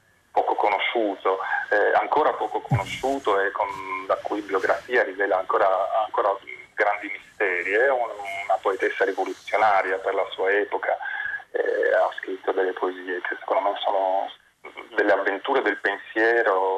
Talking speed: 130 wpm